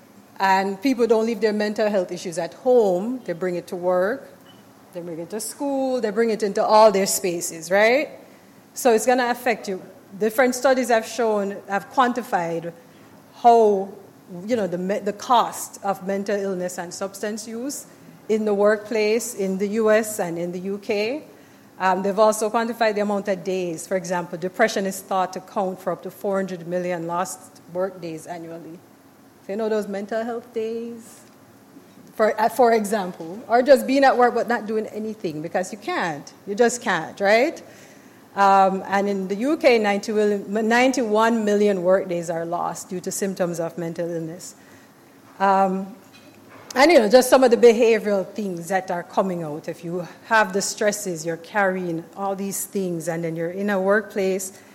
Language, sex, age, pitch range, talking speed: English, female, 30-49, 185-225 Hz, 175 wpm